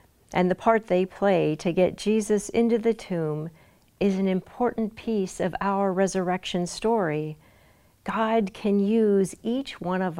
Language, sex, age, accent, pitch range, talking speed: English, female, 50-69, American, 160-195 Hz, 145 wpm